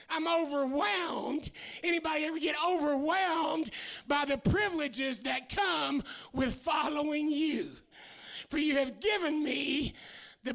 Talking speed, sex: 115 wpm, male